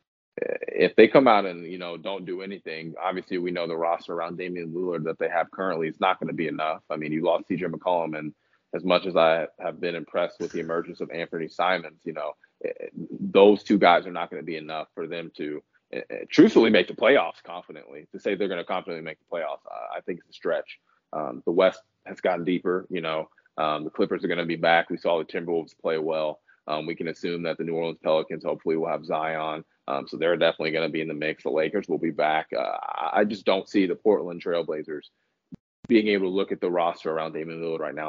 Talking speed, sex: 240 wpm, male